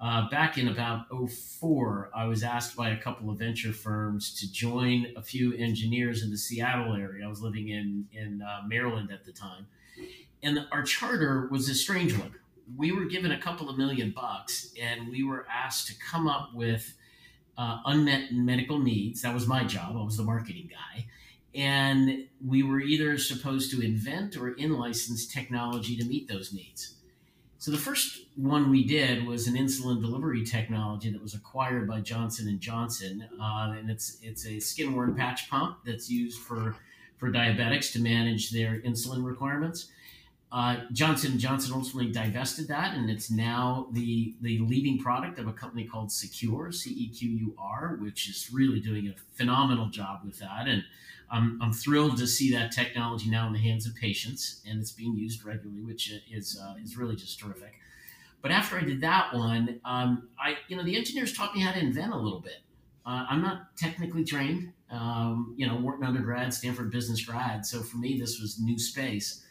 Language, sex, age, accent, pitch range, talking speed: English, male, 50-69, American, 110-135 Hz, 185 wpm